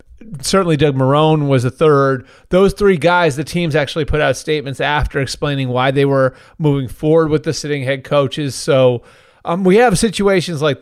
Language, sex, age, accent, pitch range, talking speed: English, male, 30-49, American, 135-165 Hz, 185 wpm